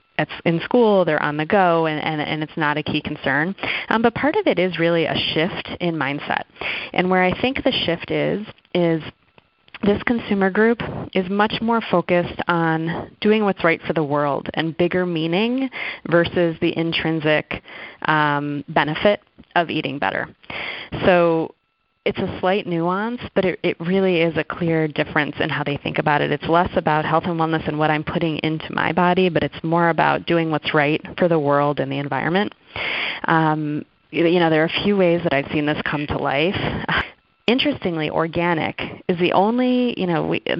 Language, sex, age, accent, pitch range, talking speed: English, female, 30-49, American, 155-185 Hz, 185 wpm